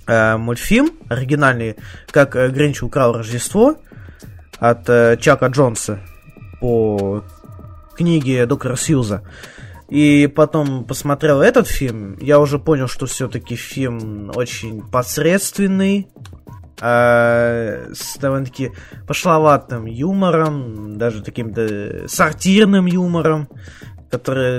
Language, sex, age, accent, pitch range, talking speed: Russian, male, 20-39, native, 110-150 Hz, 85 wpm